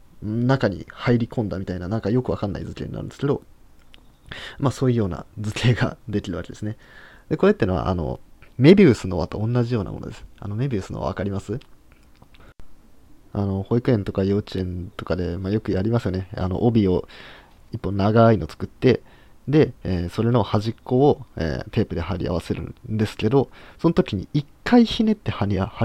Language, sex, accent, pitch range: Japanese, male, native, 95-130 Hz